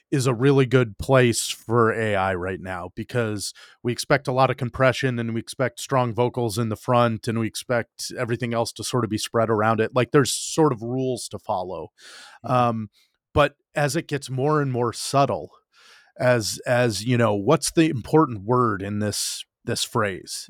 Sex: male